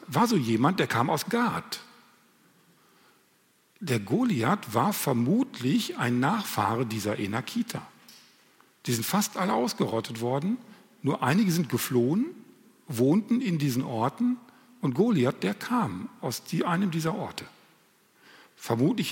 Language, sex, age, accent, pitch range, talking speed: German, male, 50-69, German, 130-205 Hz, 120 wpm